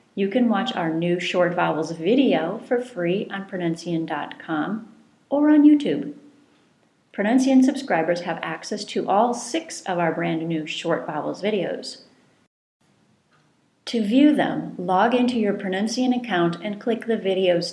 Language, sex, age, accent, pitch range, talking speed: English, female, 40-59, American, 170-250 Hz, 140 wpm